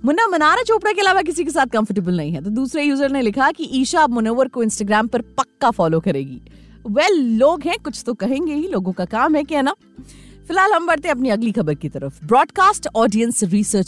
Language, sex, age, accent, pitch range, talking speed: Hindi, female, 30-49, native, 215-315 Hz, 85 wpm